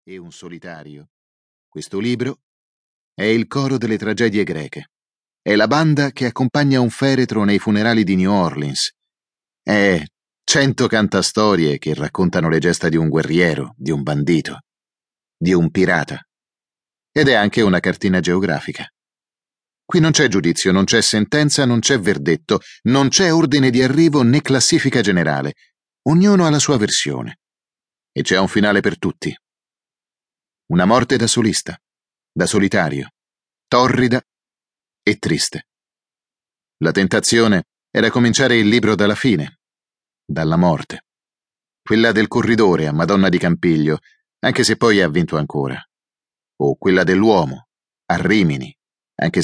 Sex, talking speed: male, 135 wpm